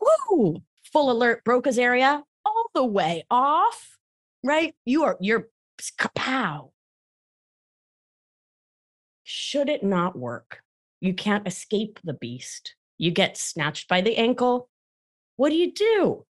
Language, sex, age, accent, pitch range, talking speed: English, female, 30-49, American, 145-230 Hz, 120 wpm